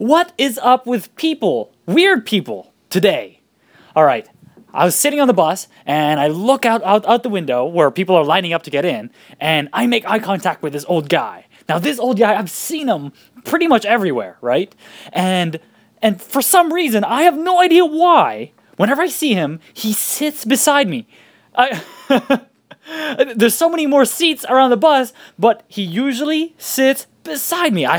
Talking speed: 180 wpm